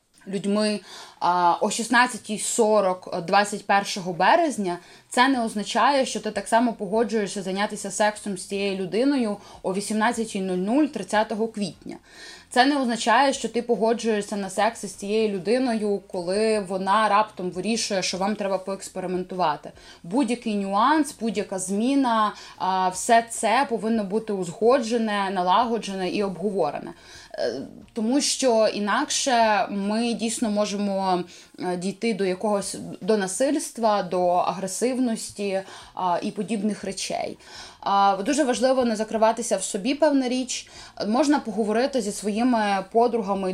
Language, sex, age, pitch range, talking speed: Ukrainian, female, 20-39, 195-230 Hz, 115 wpm